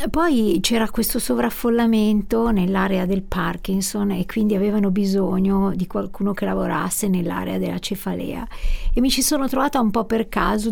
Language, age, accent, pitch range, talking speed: Italian, 50-69, native, 195-225 Hz, 150 wpm